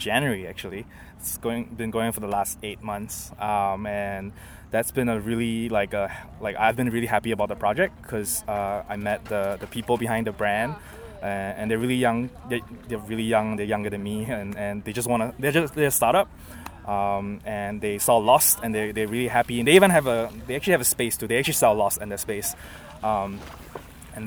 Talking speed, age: 225 wpm, 20-39